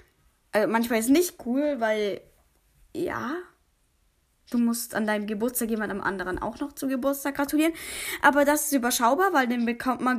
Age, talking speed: 10-29, 165 wpm